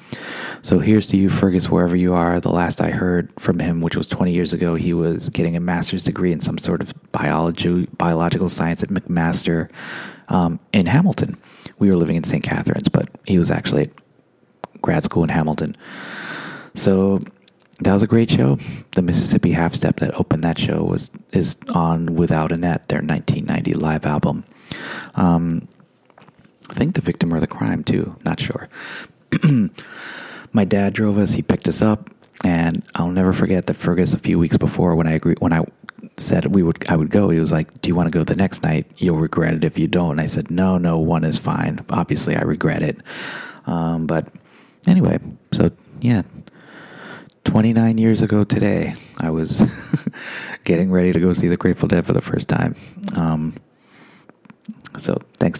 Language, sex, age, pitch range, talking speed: English, male, 30-49, 80-90 Hz, 180 wpm